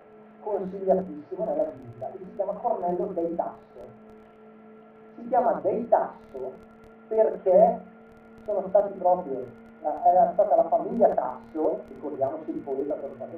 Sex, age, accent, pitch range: male, 40-59, native, 145-230 Hz